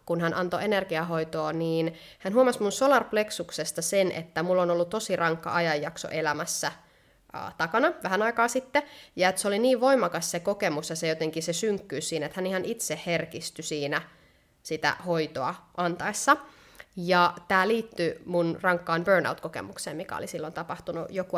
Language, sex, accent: Finnish, female, native